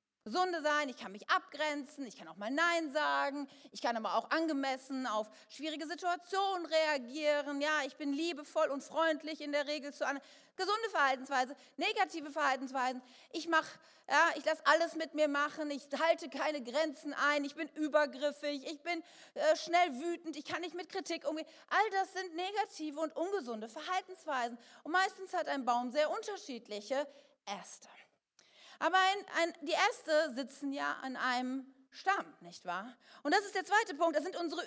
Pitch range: 270-340 Hz